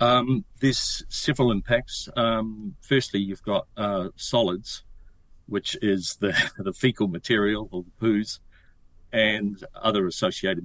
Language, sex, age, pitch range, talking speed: English, male, 50-69, 95-120 Hz, 125 wpm